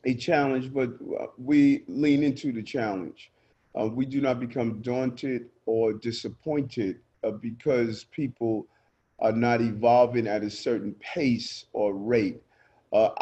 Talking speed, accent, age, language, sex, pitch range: 130 wpm, American, 40-59, English, male, 110-130 Hz